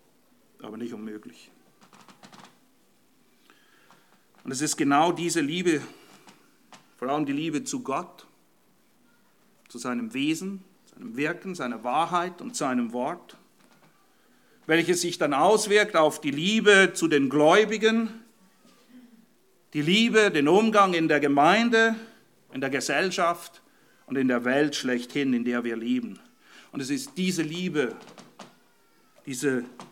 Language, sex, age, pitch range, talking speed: English, male, 50-69, 135-225 Hz, 120 wpm